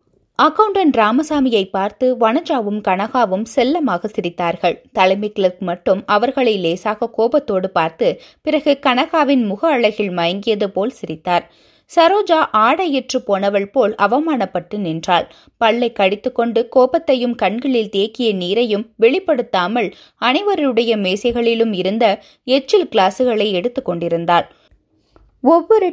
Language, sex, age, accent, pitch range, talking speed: Tamil, female, 20-39, native, 190-270 Hz, 95 wpm